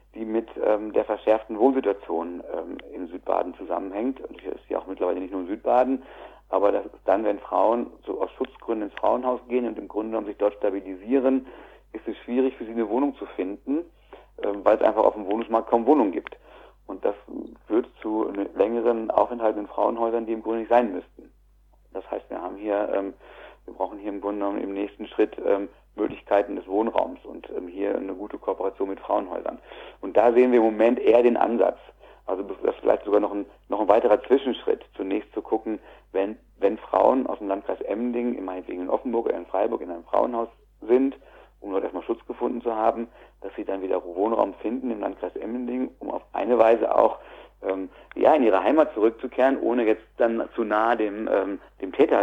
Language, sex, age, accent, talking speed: German, male, 40-59, German, 200 wpm